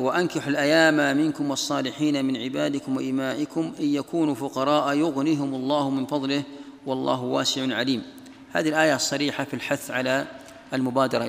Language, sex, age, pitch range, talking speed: Arabic, male, 40-59, 130-145 Hz, 130 wpm